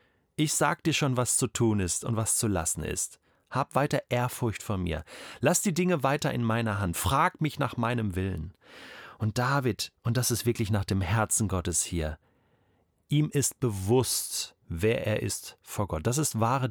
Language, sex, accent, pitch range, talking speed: German, male, German, 100-145 Hz, 185 wpm